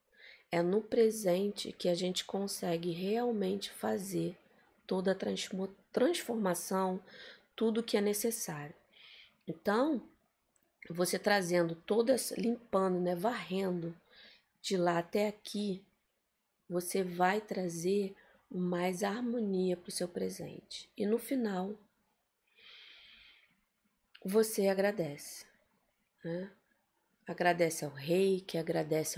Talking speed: 95 wpm